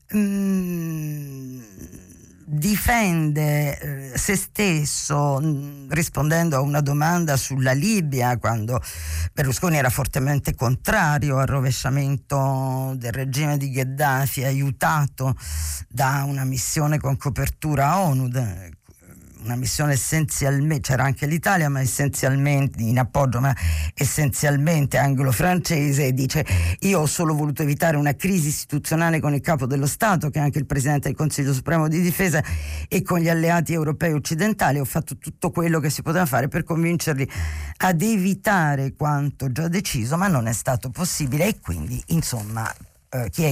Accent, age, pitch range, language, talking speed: native, 50-69, 125-155 Hz, Italian, 130 wpm